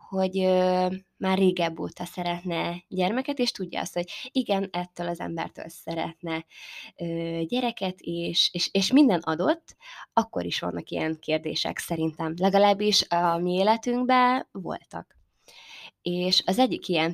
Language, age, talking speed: Hungarian, 20-39, 135 wpm